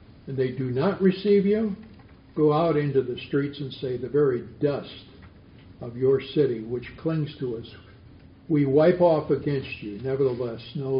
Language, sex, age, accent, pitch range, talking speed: English, male, 60-79, American, 90-135 Hz, 165 wpm